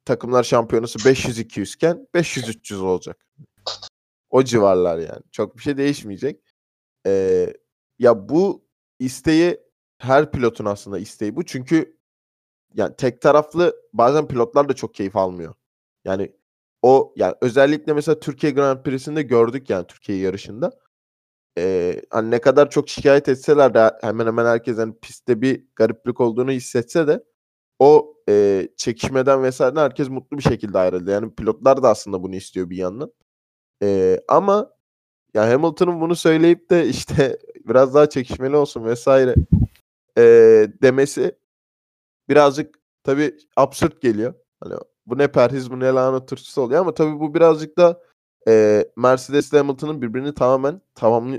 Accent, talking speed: native, 140 wpm